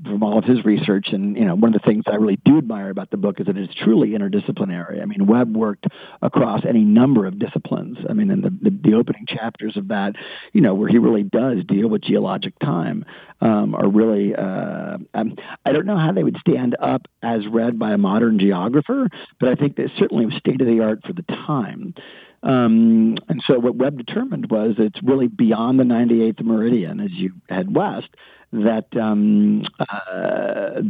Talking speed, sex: 210 wpm, male